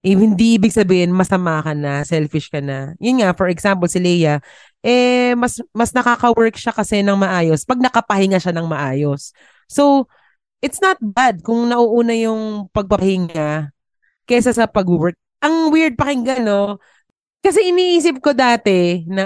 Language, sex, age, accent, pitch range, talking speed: Filipino, female, 20-39, native, 160-220 Hz, 155 wpm